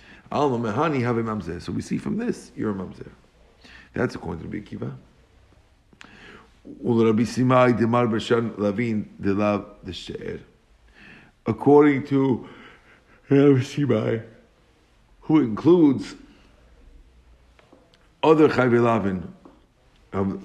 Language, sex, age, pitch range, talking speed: English, male, 50-69, 105-125 Hz, 80 wpm